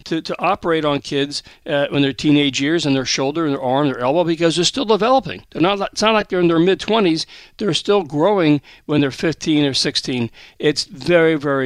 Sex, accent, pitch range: male, American, 135-175 Hz